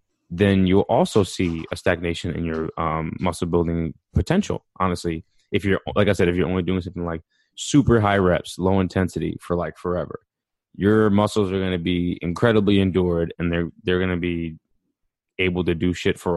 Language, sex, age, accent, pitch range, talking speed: English, male, 20-39, American, 85-95 Hz, 185 wpm